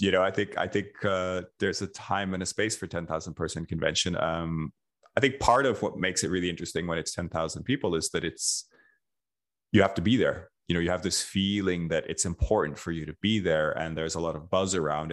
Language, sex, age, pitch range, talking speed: English, male, 30-49, 80-95 Hz, 240 wpm